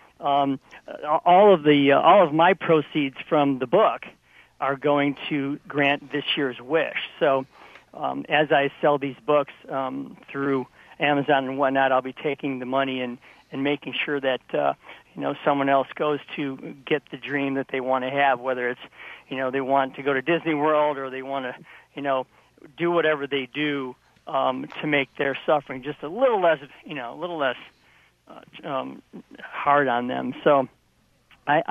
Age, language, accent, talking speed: 50-69, English, American, 185 wpm